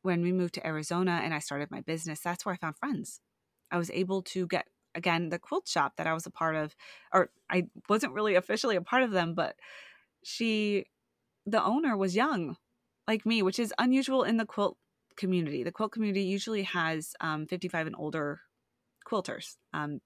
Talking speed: 195 wpm